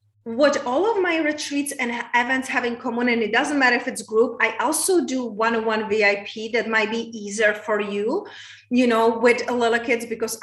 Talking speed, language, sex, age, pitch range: 200 wpm, English, female, 30-49, 210-245 Hz